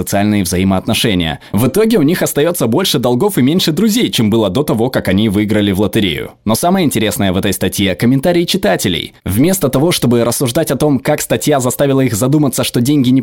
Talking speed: 200 wpm